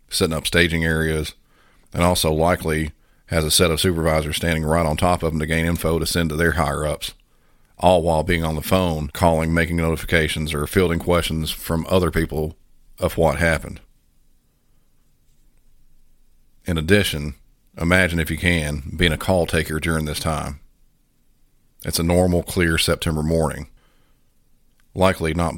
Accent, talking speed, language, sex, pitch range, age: American, 150 wpm, English, male, 75-85 Hz, 40-59